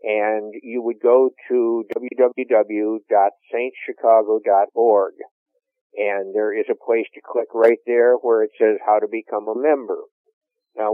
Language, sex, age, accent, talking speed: English, male, 50-69, American, 130 wpm